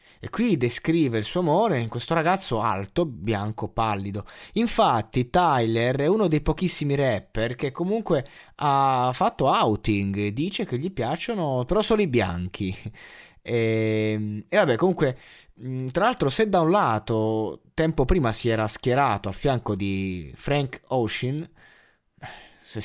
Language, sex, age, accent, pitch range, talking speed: Italian, male, 20-39, native, 110-145 Hz, 140 wpm